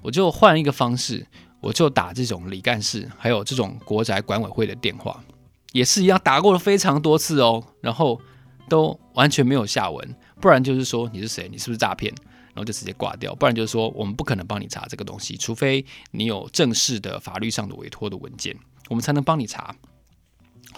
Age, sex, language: 20-39, male, Chinese